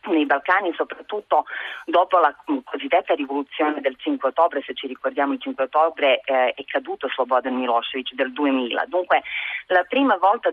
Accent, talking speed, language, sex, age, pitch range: native, 155 wpm, Italian, female, 30-49, 130-165 Hz